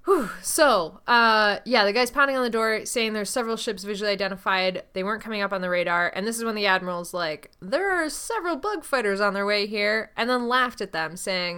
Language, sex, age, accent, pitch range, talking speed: English, female, 20-39, American, 180-220 Hz, 230 wpm